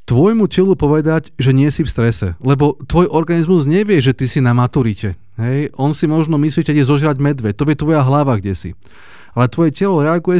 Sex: male